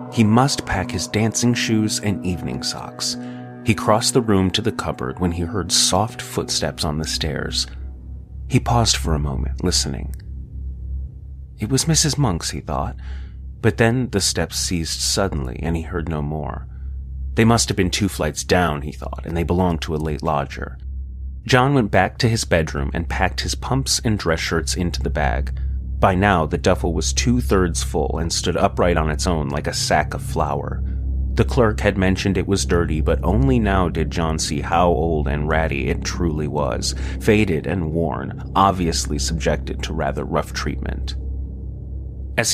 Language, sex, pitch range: English, male, 65-95 Hz